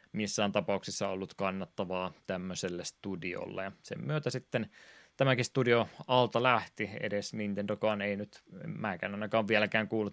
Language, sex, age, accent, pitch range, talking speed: Finnish, male, 20-39, native, 100-110 Hz, 130 wpm